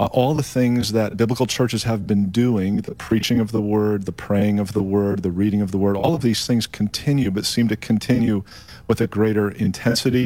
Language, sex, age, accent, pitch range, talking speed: English, male, 40-59, American, 100-115 Hz, 205 wpm